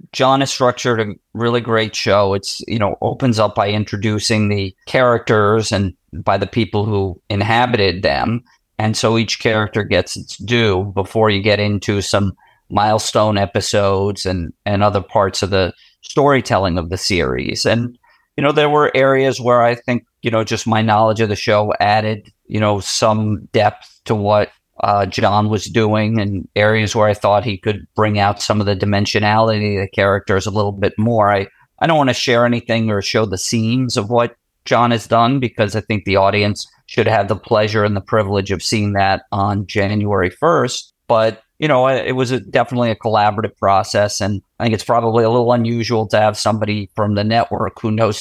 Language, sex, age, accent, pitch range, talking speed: English, male, 40-59, American, 100-115 Hz, 190 wpm